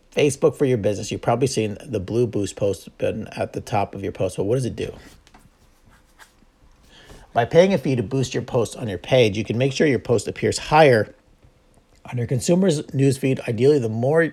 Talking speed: 215 wpm